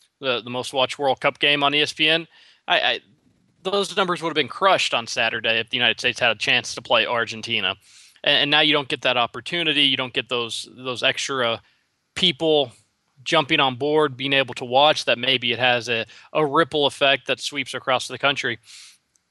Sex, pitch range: male, 125-150 Hz